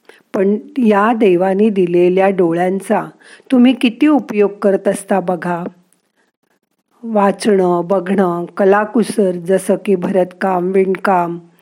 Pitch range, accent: 190-240 Hz, native